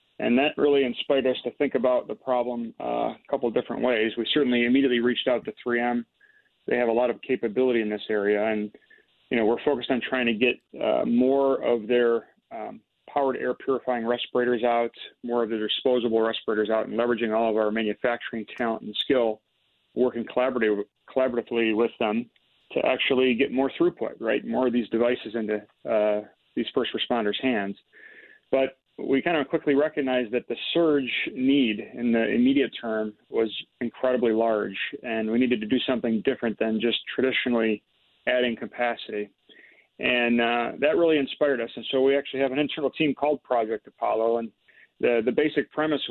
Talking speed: 180 wpm